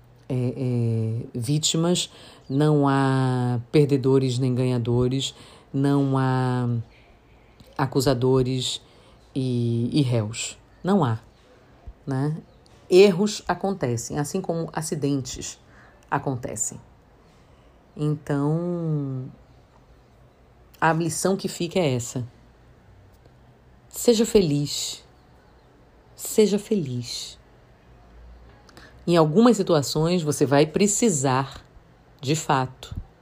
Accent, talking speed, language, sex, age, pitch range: Brazilian, 70 wpm, Portuguese, female, 40-59, 120-150 Hz